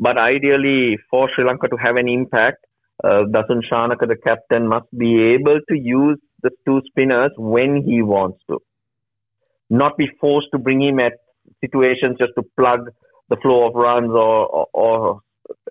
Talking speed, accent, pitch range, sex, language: 170 wpm, Indian, 115-135 Hz, male, English